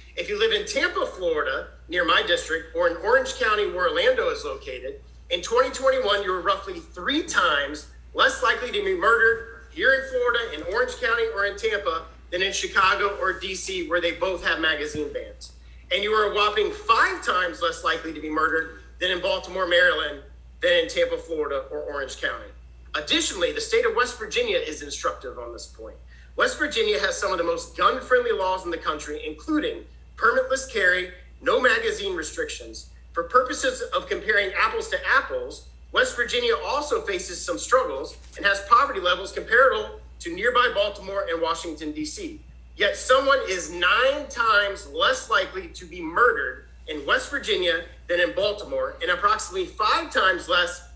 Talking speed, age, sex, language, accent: 170 wpm, 40-59, male, English, American